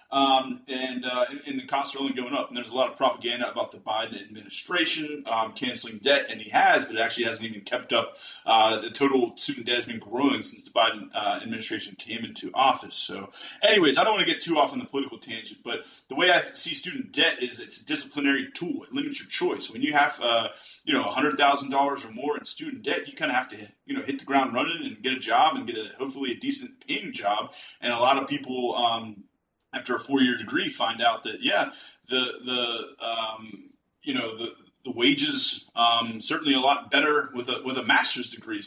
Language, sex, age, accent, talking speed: English, male, 30-49, American, 230 wpm